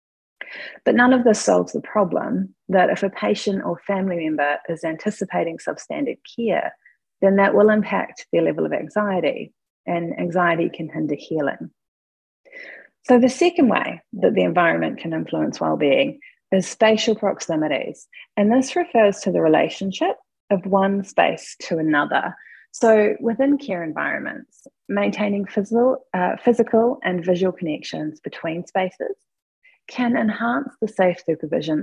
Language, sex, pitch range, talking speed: English, female, 180-240 Hz, 140 wpm